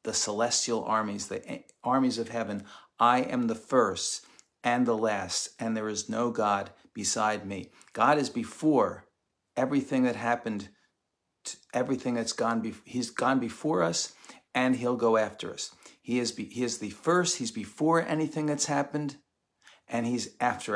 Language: English